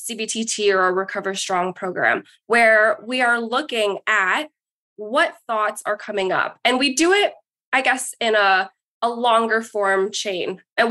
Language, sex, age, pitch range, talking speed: English, female, 20-39, 200-245 Hz, 160 wpm